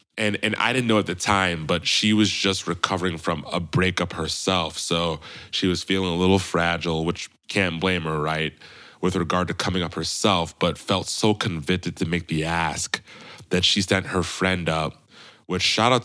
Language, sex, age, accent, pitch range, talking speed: English, male, 20-39, American, 80-95 Hz, 195 wpm